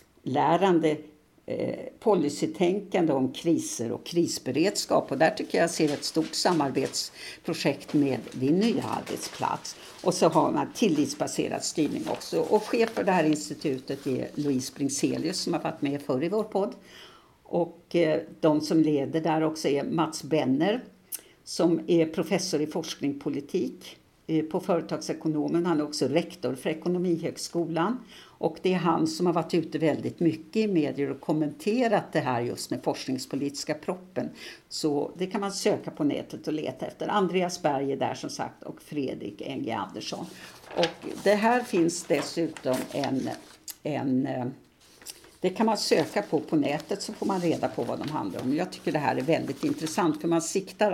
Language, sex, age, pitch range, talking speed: English, female, 60-79, 150-195 Hz, 160 wpm